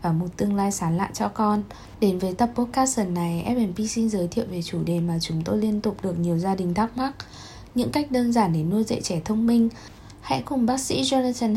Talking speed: 240 wpm